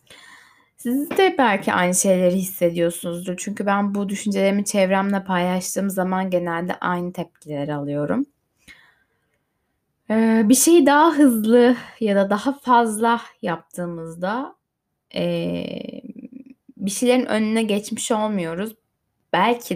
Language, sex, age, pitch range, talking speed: Turkish, female, 10-29, 175-235 Hz, 95 wpm